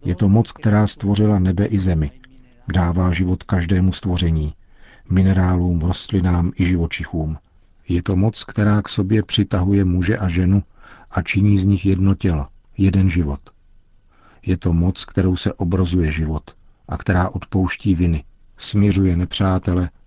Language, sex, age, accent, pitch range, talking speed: Czech, male, 50-69, native, 90-100 Hz, 140 wpm